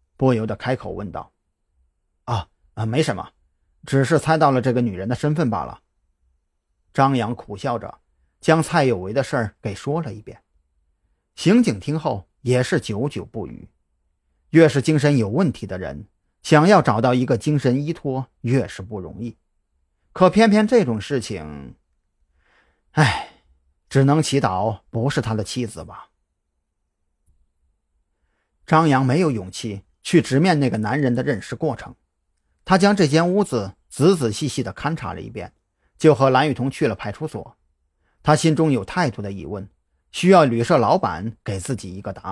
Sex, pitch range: male, 90-150 Hz